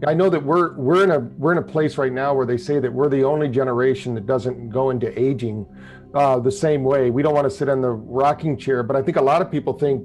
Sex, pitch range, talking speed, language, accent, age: male, 130-150 Hz, 280 wpm, English, American, 40-59